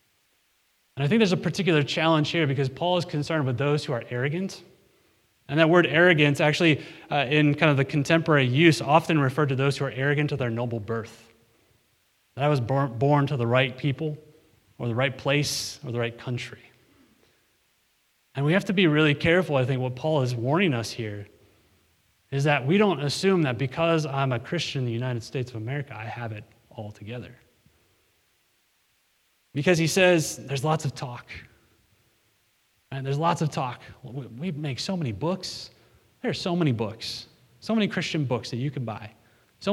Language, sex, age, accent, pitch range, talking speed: English, male, 30-49, American, 120-160 Hz, 185 wpm